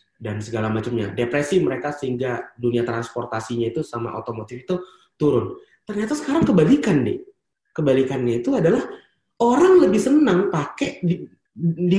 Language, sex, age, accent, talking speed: Indonesian, male, 30-49, native, 130 wpm